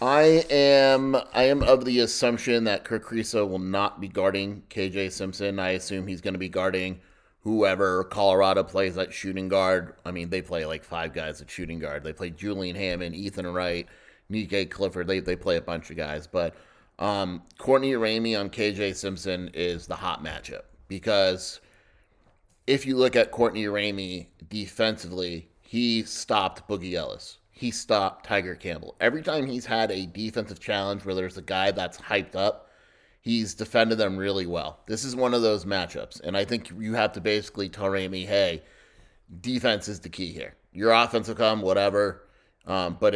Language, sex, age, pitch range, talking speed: English, male, 30-49, 95-110 Hz, 180 wpm